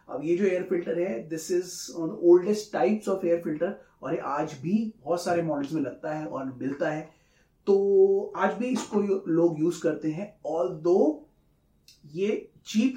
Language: Hindi